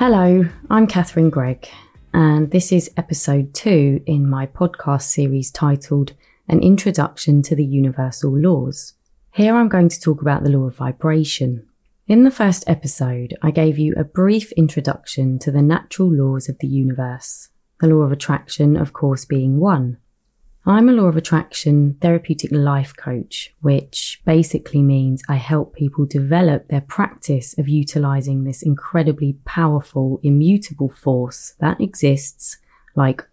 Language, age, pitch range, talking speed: English, 20-39, 135-165 Hz, 150 wpm